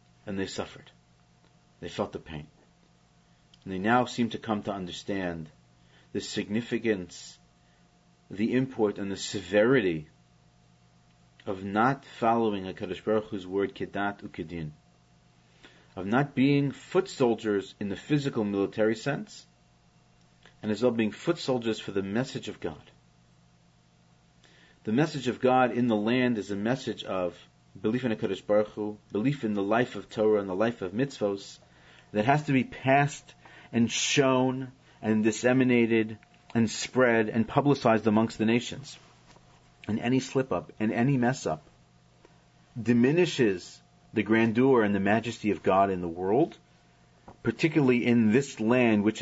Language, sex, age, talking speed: English, male, 40-59, 145 wpm